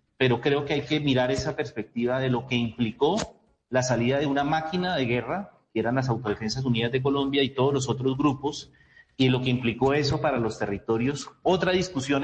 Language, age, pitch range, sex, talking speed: Spanish, 40-59, 120-150 Hz, male, 200 wpm